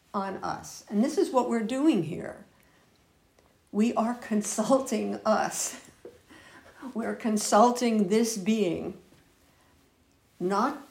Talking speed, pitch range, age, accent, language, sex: 100 wpm, 200-240 Hz, 60-79, American, English, female